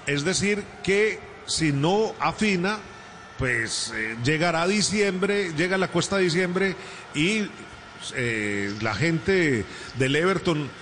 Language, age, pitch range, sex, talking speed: Spanish, 40-59, 140-190 Hz, male, 130 wpm